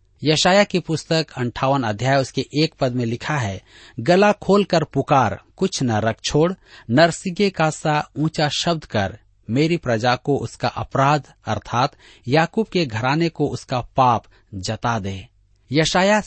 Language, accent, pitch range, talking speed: Hindi, native, 110-160 Hz, 140 wpm